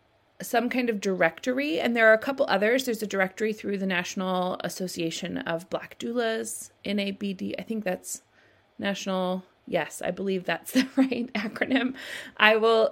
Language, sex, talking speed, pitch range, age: English, female, 160 wpm, 185-240 Hz, 30-49